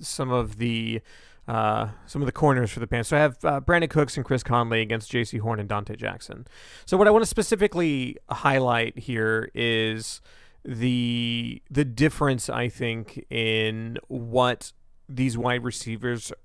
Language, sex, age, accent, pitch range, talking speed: English, male, 30-49, American, 115-145 Hz, 165 wpm